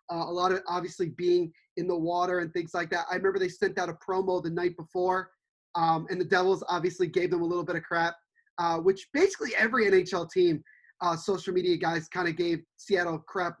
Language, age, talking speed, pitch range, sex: English, 20-39, 225 wpm, 170-205 Hz, male